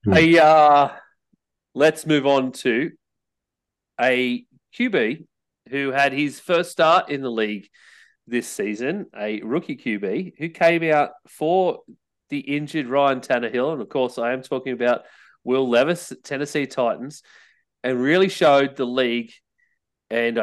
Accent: Australian